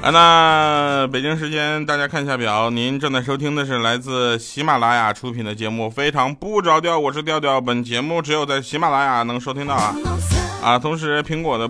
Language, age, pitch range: Chinese, 20-39, 105-145 Hz